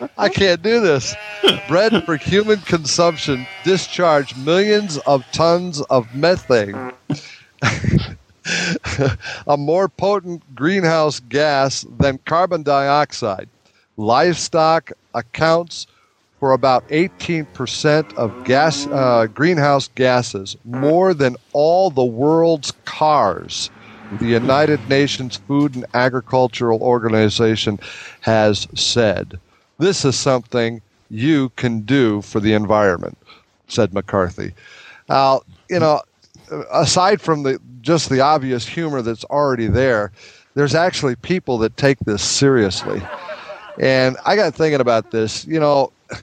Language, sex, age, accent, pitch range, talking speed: English, male, 50-69, American, 125-160 Hz, 110 wpm